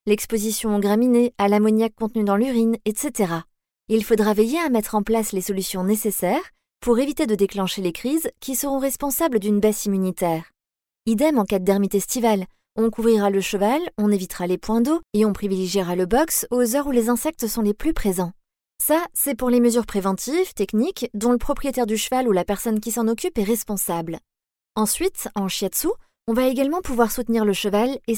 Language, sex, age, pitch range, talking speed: French, female, 30-49, 200-265 Hz, 195 wpm